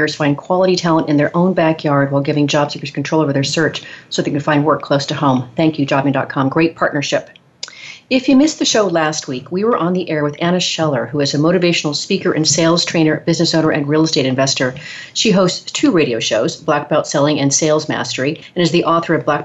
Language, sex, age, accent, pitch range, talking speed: English, female, 40-59, American, 145-180 Hz, 230 wpm